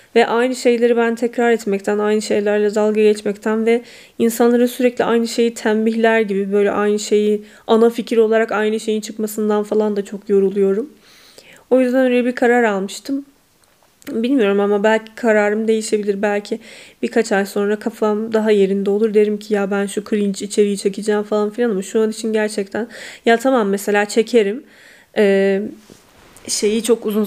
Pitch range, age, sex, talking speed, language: 205-235 Hz, 10-29, female, 160 wpm, Turkish